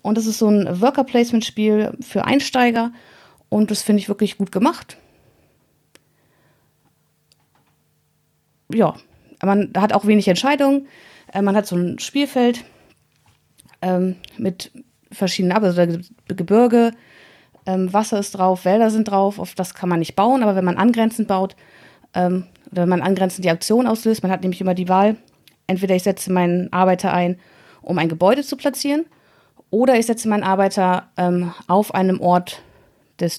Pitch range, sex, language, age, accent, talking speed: 180-220 Hz, female, German, 30-49, German, 145 wpm